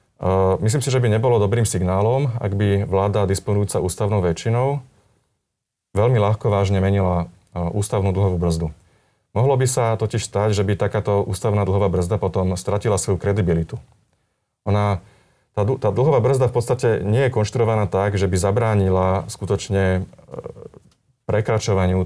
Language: Slovak